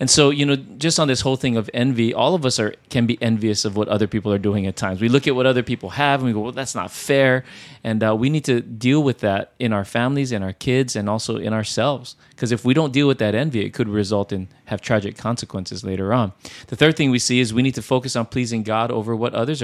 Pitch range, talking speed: 110-135 Hz, 280 wpm